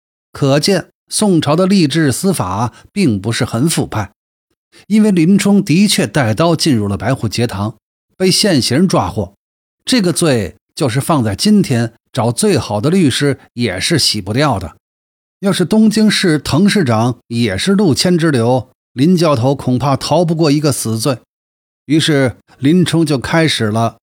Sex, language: male, Chinese